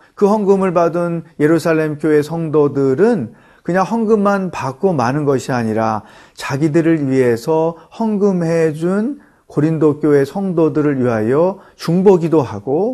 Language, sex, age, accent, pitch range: Korean, male, 40-59, native, 135-190 Hz